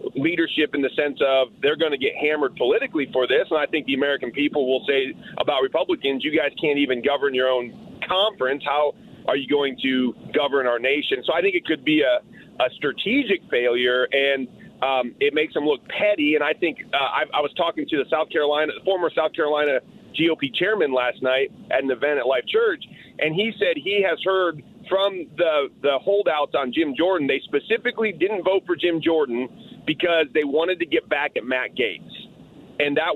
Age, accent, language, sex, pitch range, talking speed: 40-59, American, English, male, 140-225 Hz, 205 wpm